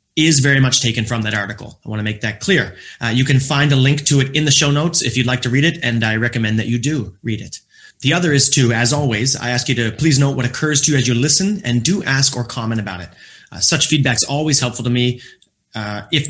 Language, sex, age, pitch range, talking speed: English, male, 30-49, 115-140 Hz, 275 wpm